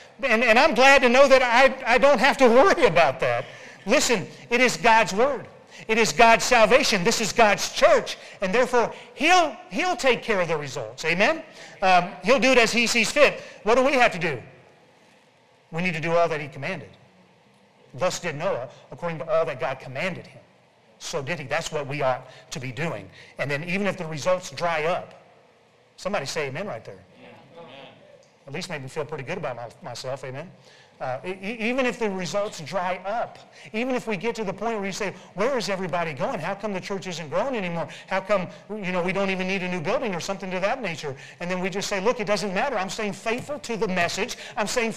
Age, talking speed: 40-59, 220 wpm